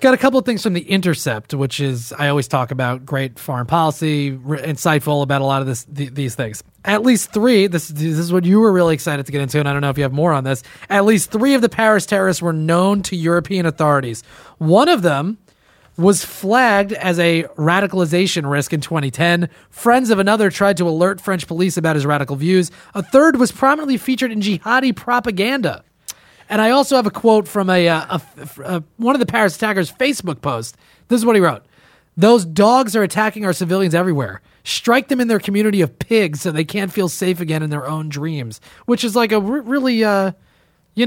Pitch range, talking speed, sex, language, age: 150-215 Hz, 215 wpm, male, English, 30-49